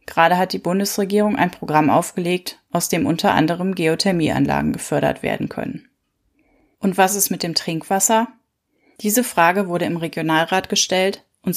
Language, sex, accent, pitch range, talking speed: German, female, German, 165-200 Hz, 145 wpm